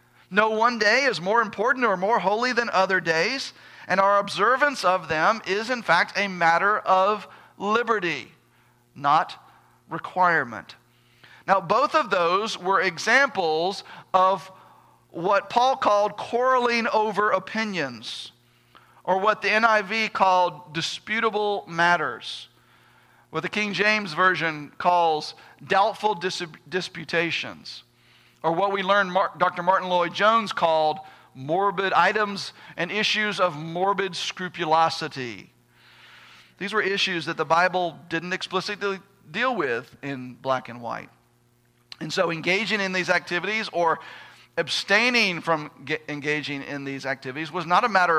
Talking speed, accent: 125 wpm, American